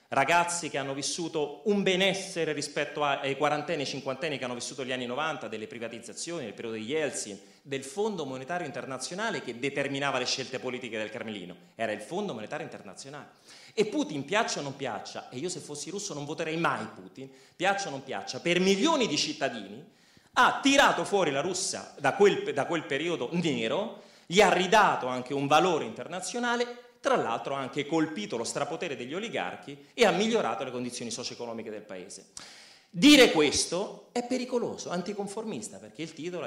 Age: 30-49